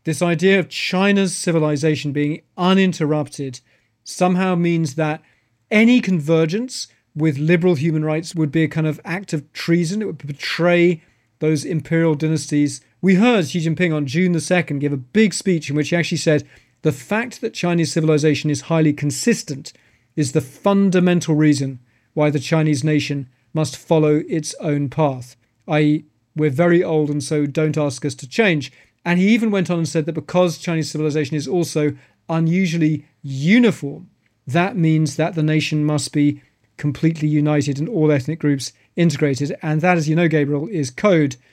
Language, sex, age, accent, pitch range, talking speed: English, male, 40-59, British, 145-170 Hz, 170 wpm